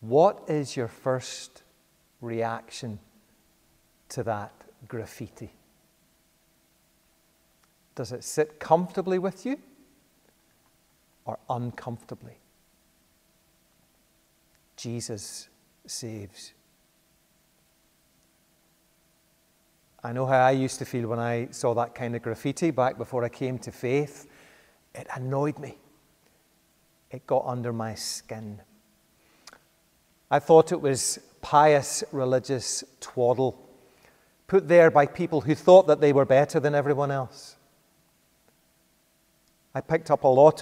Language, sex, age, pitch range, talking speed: English, male, 40-59, 120-160 Hz, 105 wpm